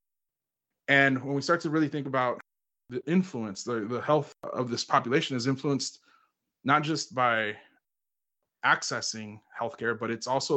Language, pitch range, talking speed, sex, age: English, 115-135 Hz, 150 wpm, male, 20-39